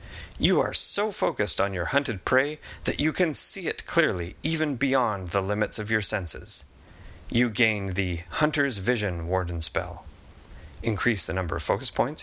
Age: 30-49